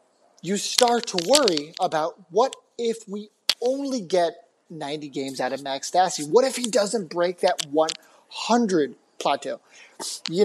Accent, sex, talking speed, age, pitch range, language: American, male, 145 wpm, 30-49, 165-245 Hz, English